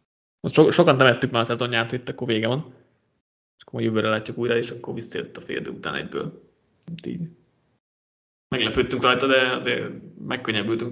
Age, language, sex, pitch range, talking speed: 20-39, Hungarian, male, 115-140 Hz, 165 wpm